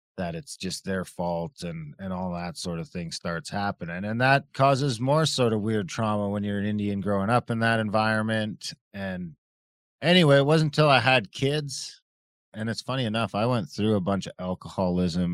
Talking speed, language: 195 wpm, English